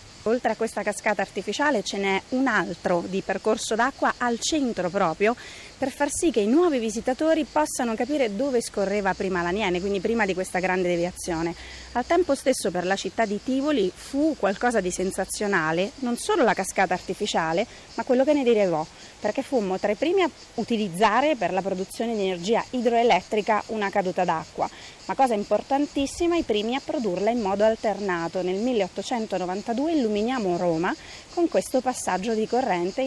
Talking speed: 165 wpm